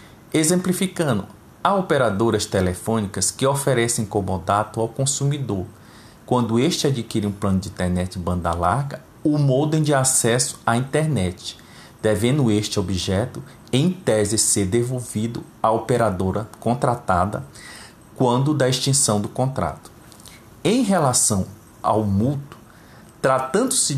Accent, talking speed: Brazilian, 115 wpm